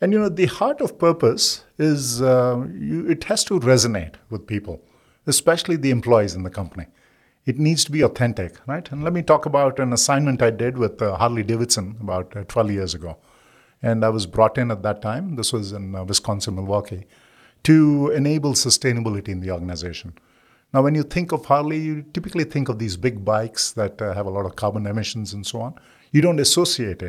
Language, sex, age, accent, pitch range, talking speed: English, male, 50-69, Indian, 105-145 Hz, 205 wpm